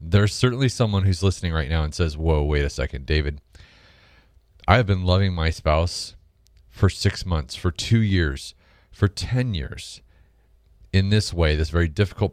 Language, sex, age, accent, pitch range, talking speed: English, male, 30-49, American, 80-105 Hz, 165 wpm